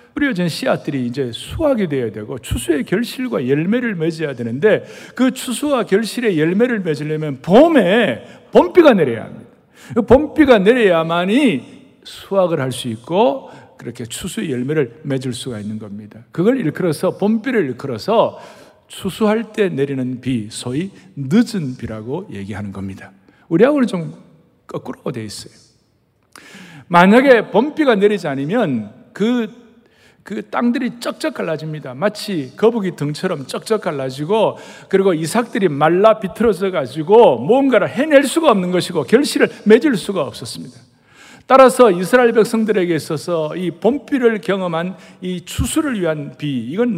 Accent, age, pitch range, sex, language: native, 60-79, 150-235 Hz, male, Korean